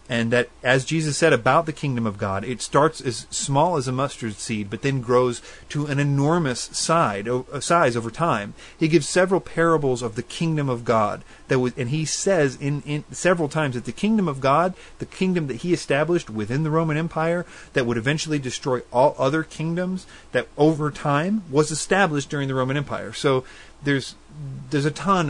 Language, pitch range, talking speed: English, 115-155 Hz, 195 wpm